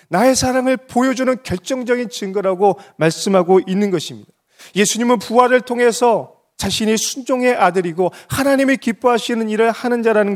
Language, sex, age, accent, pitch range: Korean, male, 30-49, native, 135-215 Hz